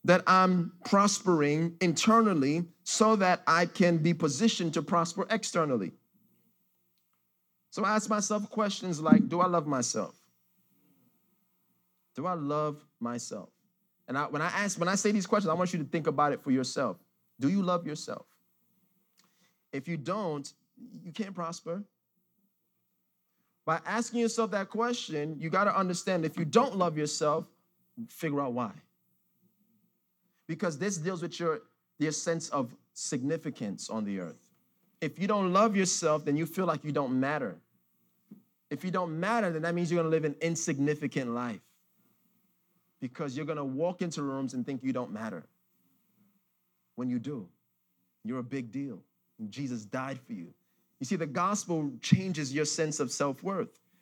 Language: English